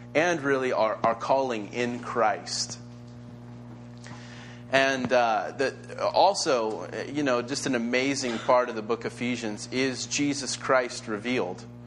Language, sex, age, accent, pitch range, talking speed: English, male, 30-49, American, 120-135 Hz, 130 wpm